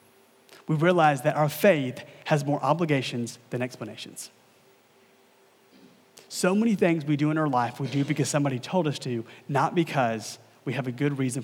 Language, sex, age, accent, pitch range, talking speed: English, male, 30-49, American, 145-190 Hz, 170 wpm